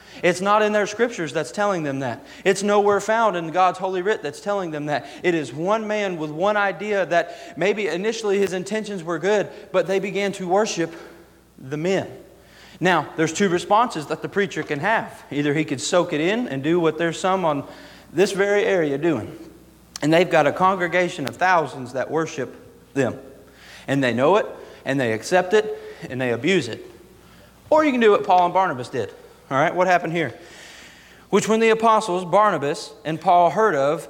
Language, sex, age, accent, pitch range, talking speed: English, male, 40-59, American, 170-210 Hz, 195 wpm